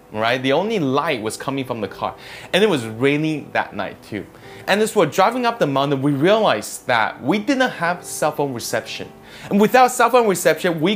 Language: Chinese